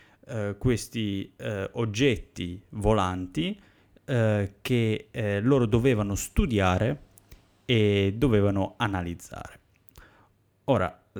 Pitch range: 95-120 Hz